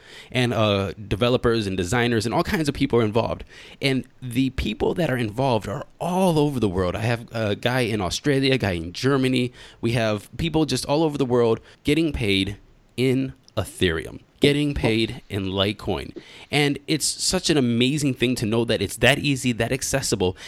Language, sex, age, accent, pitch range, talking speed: English, male, 20-39, American, 110-145 Hz, 185 wpm